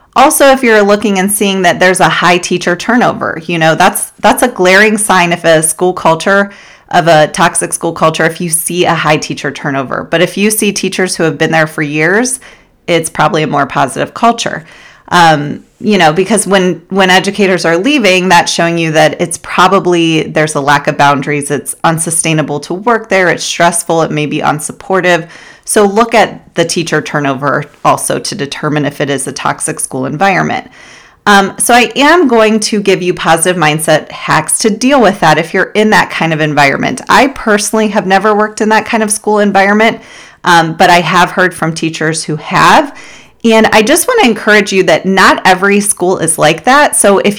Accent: American